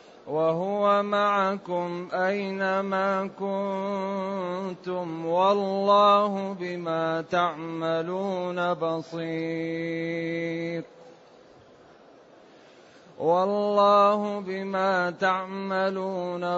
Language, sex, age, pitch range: Arabic, male, 30-49, 180-200 Hz